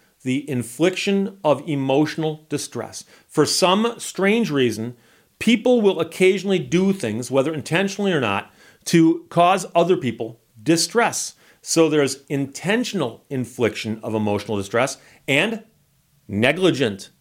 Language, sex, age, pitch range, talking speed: English, male, 40-59, 135-180 Hz, 110 wpm